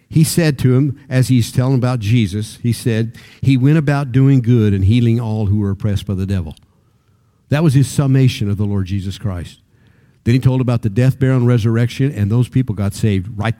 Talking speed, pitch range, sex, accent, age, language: 215 wpm, 100-120 Hz, male, American, 50-69, English